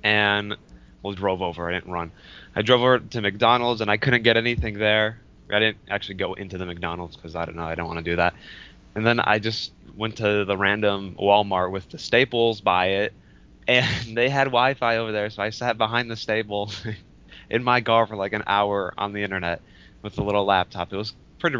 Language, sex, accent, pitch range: English, male, American, 90-115 Hz